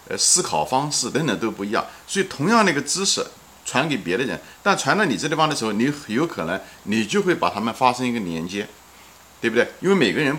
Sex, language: male, Chinese